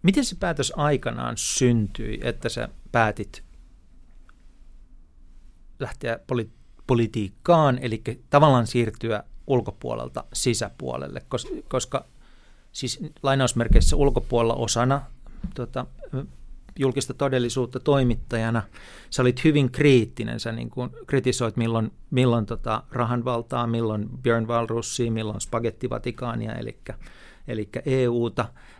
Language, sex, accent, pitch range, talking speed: Finnish, male, native, 115-130 Hz, 95 wpm